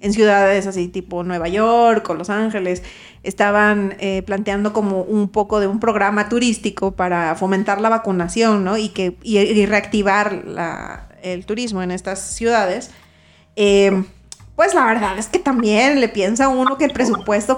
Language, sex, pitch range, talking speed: Spanish, female, 195-240 Hz, 165 wpm